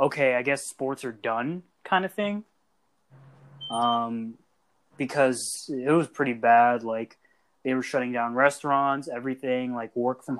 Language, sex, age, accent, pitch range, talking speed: English, male, 20-39, American, 125-160 Hz, 145 wpm